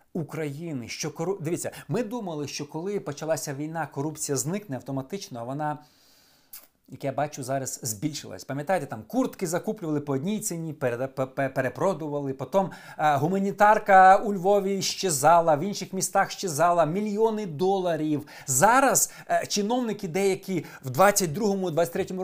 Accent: native